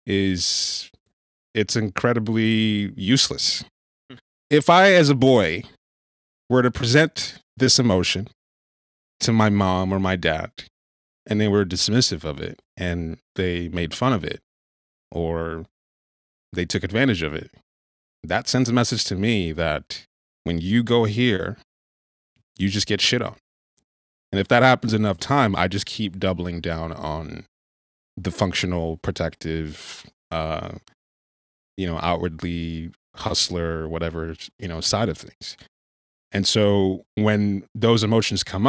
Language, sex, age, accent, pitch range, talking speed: English, male, 30-49, American, 80-110 Hz, 135 wpm